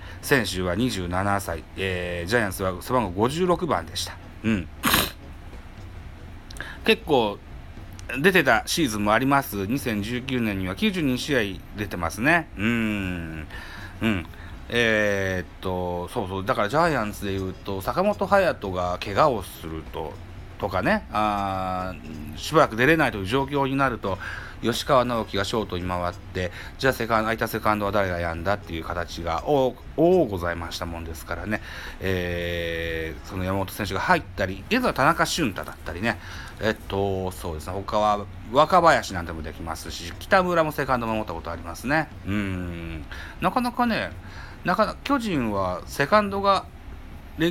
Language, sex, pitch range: Japanese, male, 85-115 Hz